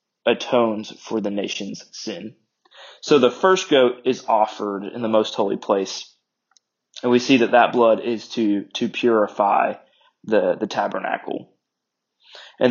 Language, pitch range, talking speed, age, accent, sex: English, 110-125 Hz, 140 wpm, 20-39, American, male